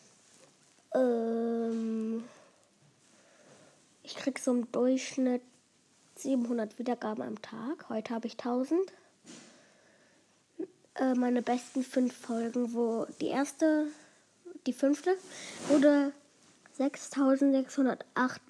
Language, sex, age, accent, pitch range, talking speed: German, female, 20-39, German, 250-285 Hz, 80 wpm